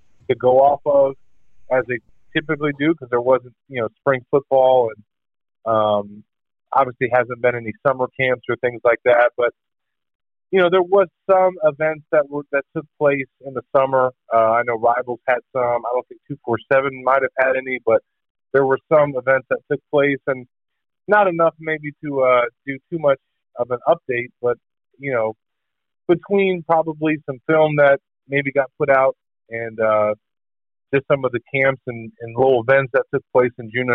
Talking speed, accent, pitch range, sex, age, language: 185 wpm, American, 120-145 Hz, male, 30-49, English